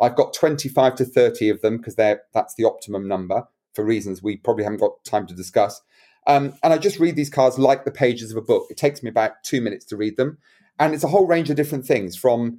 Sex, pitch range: male, 120-150 Hz